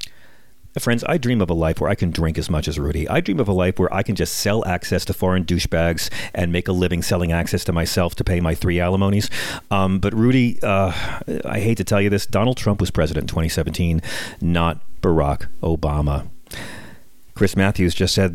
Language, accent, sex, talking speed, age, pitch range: English, American, male, 210 wpm, 40-59, 90-115 Hz